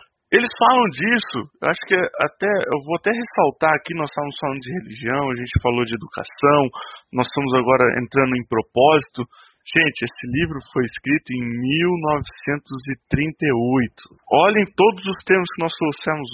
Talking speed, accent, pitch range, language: 155 wpm, Brazilian, 135-190 Hz, Portuguese